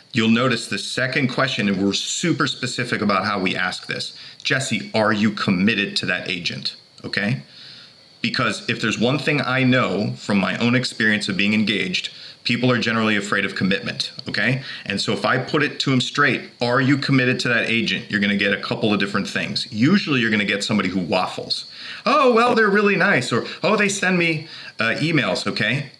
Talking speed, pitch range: 205 wpm, 105-150 Hz